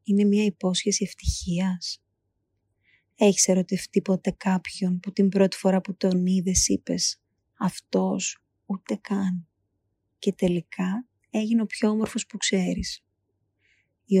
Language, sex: Greek, female